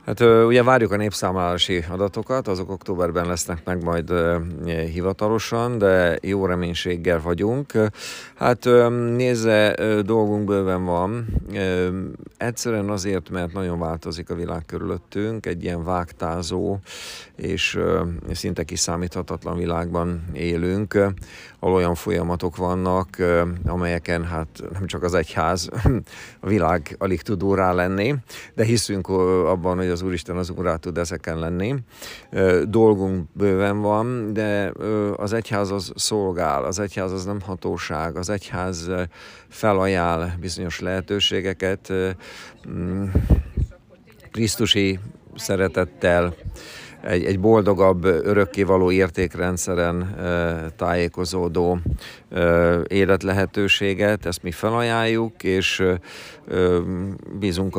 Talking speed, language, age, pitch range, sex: 100 wpm, Hungarian, 50-69, 85-100 Hz, male